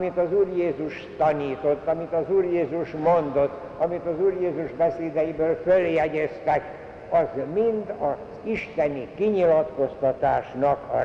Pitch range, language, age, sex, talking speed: 140-175 Hz, Hungarian, 60-79, male, 120 wpm